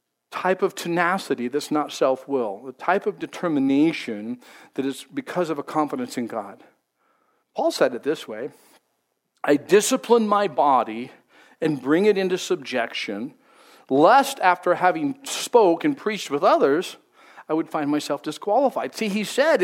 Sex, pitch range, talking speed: male, 145-235 Hz, 145 wpm